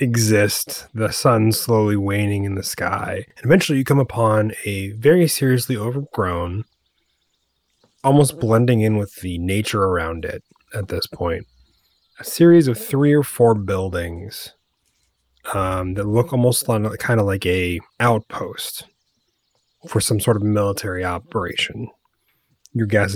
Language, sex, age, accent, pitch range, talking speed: English, male, 30-49, American, 100-120 Hz, 135 wpm